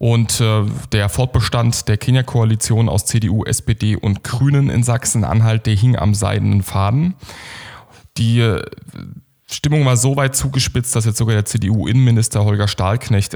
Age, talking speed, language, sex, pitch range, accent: 10-29, 135 wpm, German, male, 105-120 Hz, German